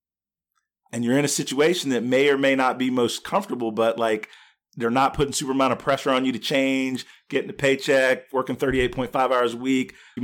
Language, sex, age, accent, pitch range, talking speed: English, male, 40-59, American, 115-145 Hz, 205 wpm